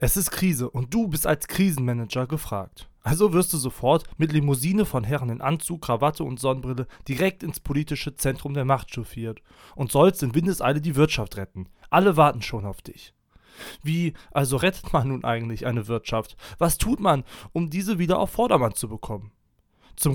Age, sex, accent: 20-39, male, German